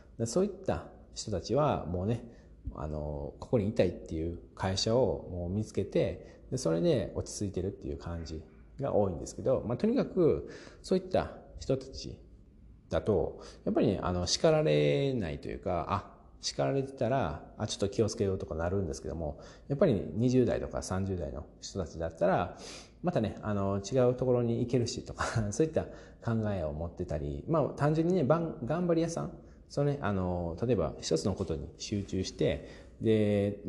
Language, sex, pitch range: Japanese, male, 80-110 Hz